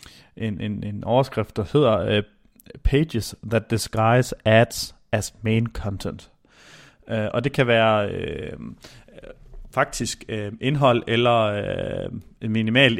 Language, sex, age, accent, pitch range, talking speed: Danish, male, 30-49, native, 105-120 Hz, 110 wpm